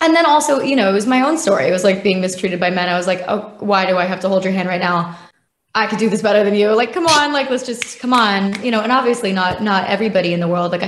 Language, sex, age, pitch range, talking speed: English, female, 20-39, 180-215 Hz, 315 wpm